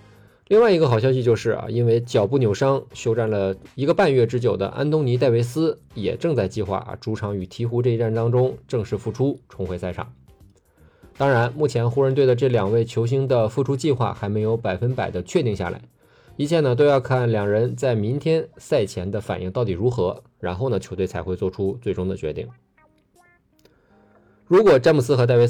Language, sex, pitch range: Chinese, male, 100-125 Hz